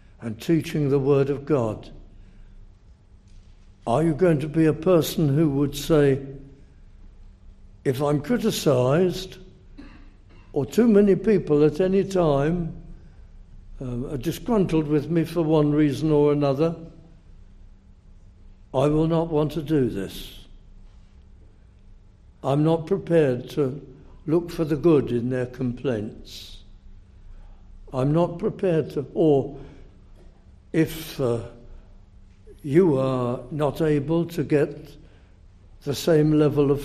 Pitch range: 95-160 Hz